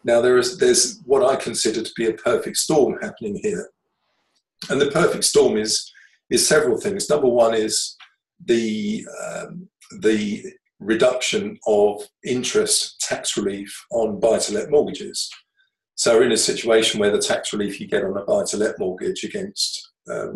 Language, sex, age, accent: English, male, 50-69, British